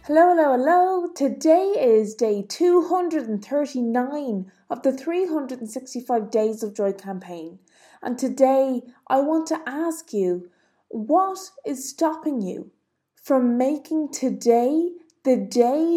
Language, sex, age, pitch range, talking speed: English, female, 20-39, 220-290 Hz, 115 wpm